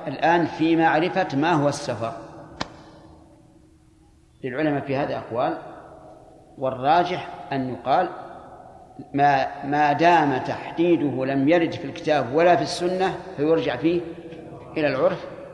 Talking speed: 110 wpm